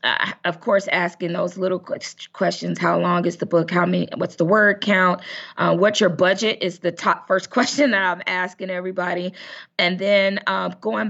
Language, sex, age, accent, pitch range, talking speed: English, female, 20-39, American, 185-235 Hz, 190 wpm